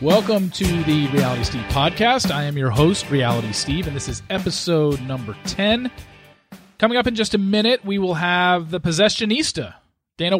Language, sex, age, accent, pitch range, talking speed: English, male, 40-59, American, 125-190 Hz, 175 wpm